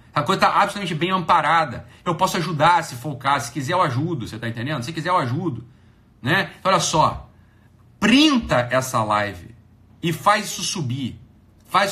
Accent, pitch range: Brazilian, 125-190 Hz